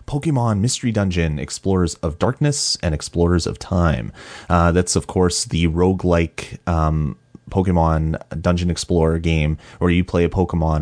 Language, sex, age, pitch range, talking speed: English, male, 30-49, 80-95 Hz, 140 wpm